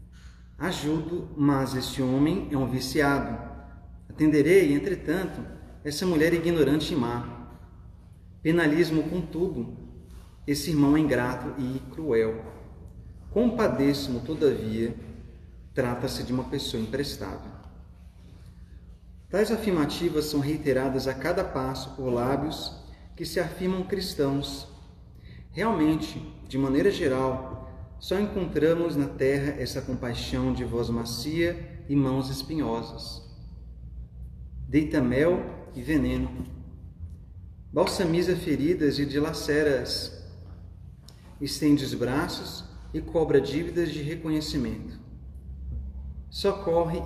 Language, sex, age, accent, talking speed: Portuguese, male, 40-59, Brazilian, 95 wpm